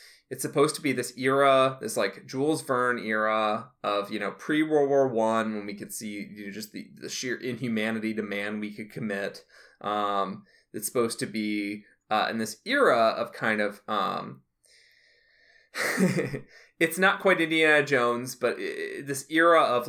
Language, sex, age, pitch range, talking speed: English, male, 20-39, 110-150 Hz, 160 wpm